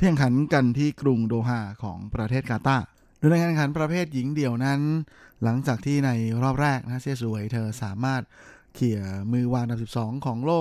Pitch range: 115-140 Hz